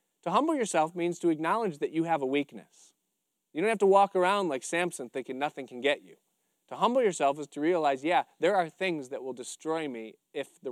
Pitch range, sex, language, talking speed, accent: 130-180 Hz, male, English, 225 wpm, American